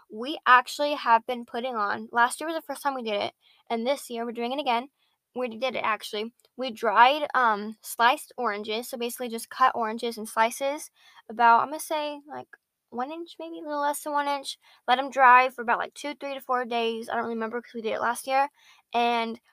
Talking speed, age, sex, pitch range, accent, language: 225 wpm, 10-29, female, 230-270 Hz, American, English